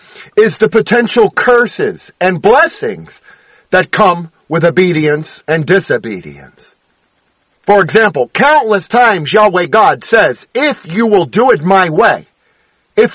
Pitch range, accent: 175-225 Hz, American